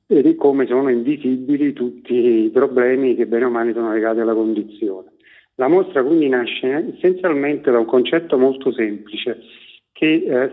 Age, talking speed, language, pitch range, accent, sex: 40-59, 155 wpm, Italian, 120-155 Hz, native, male